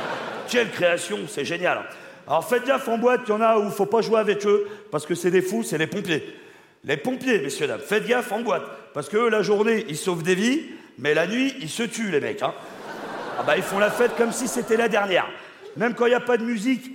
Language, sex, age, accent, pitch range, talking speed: French, male, 40-59, French, 195-260 Hz, 260 wpm